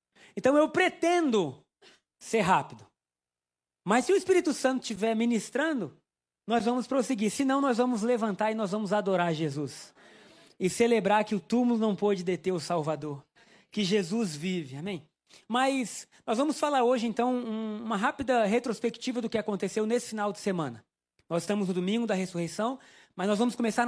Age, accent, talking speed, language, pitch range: 20-39, Brazilian, 165 wpm, Portuguese, 165-230 Hz